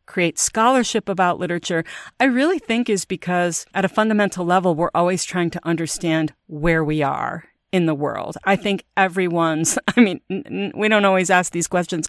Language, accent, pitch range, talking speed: English, American, 160-195 Hz, 175 wpm